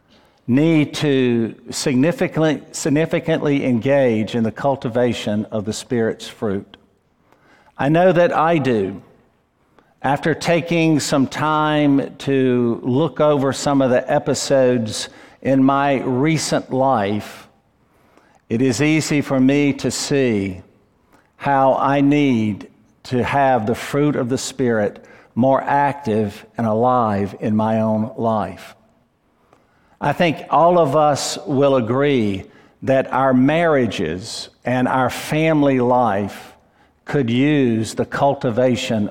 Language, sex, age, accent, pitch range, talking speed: English, male, 50-69, American, 115-145 Hz, 115 wpm